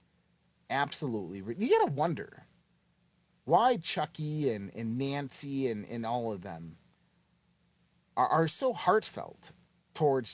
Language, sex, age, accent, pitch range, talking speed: English, male, 30-49, American, 120-175 Hz, 115 wpm